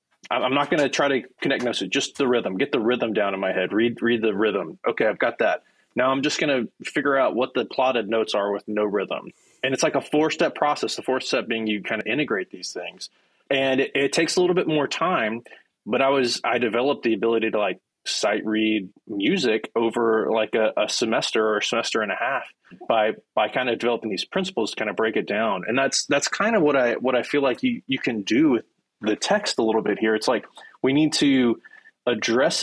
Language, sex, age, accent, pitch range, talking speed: English, male, 20-39, American, 110-140 Hz, 240 wpm